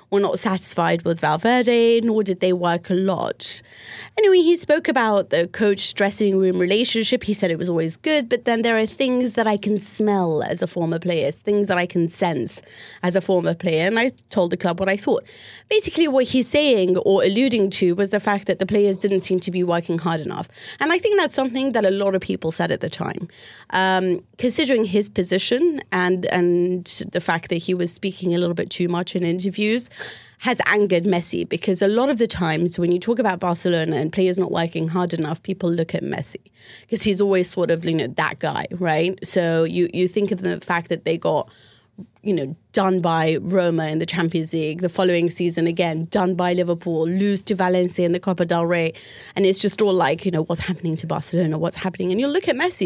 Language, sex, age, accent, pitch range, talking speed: English, female, 30-49, British, 170-210 Hz, 220 wpm